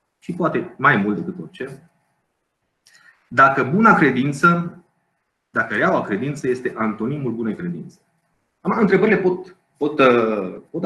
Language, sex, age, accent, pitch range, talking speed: Romanian, male, 30-49, native, 120-175 Hz, 110 wpm